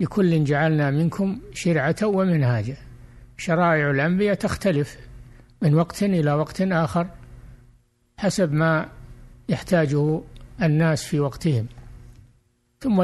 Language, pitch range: Arabic, 120-165 Hz